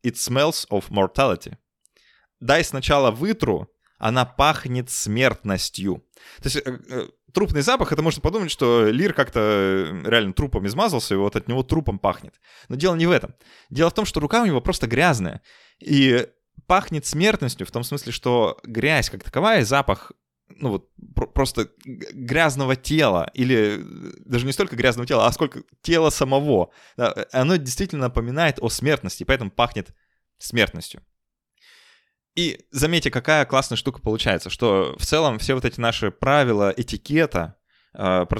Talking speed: 145 wpm